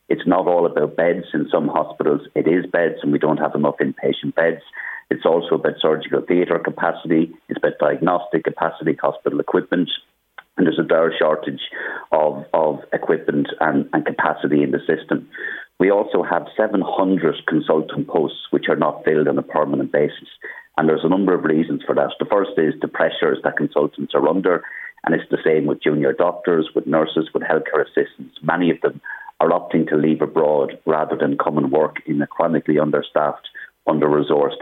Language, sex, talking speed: English, male, 180 wpm